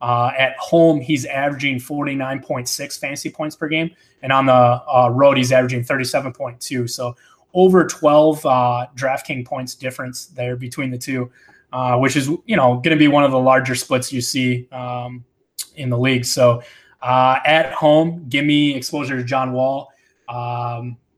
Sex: male